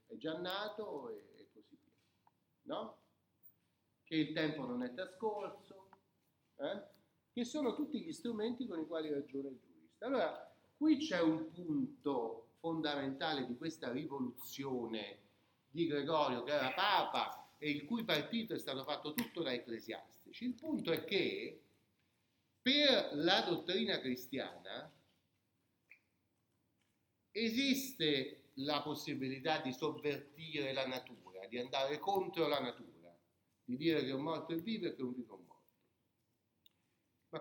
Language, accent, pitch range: Italian, native, 130-225 Hz